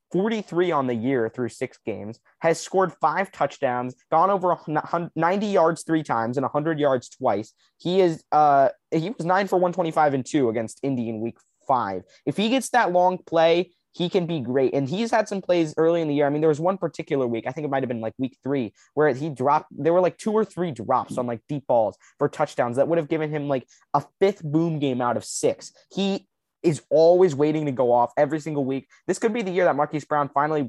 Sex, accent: male, American